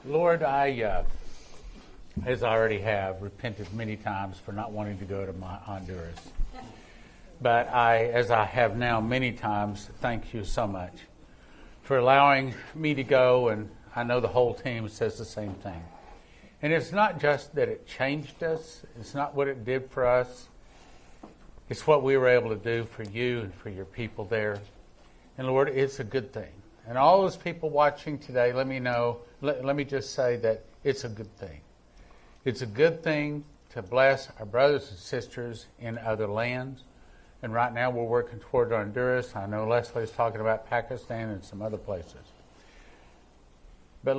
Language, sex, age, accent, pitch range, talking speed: English, male, 50-69, American, 105-135 Hz, 175 wpm